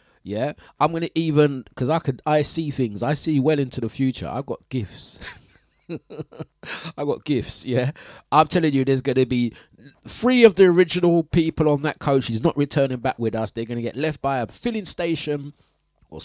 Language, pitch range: English, 125-170 Hz